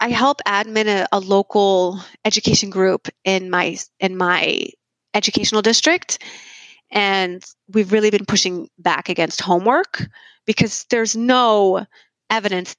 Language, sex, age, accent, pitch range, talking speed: English, female, 30-49, American, 185-235 Hz, 120 wpm